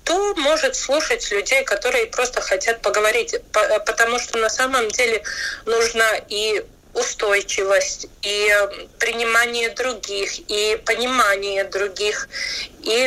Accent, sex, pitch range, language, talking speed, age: native, female, 210-270 Hz, Russian, 105 wpm, 30-49